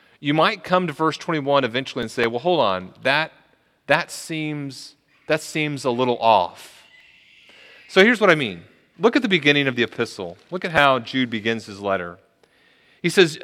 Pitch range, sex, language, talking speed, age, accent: 130-165 Hz, male, English, 185 wpm, 30-49, American